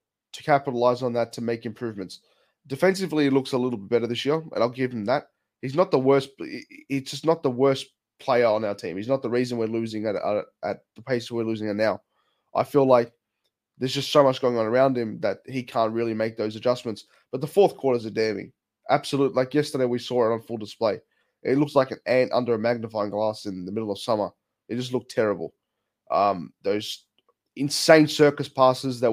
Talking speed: 220 wpm